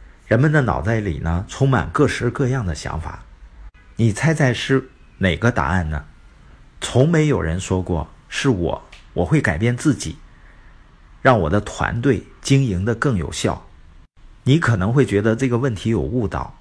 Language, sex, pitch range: Chinese, male, 85-140 Hz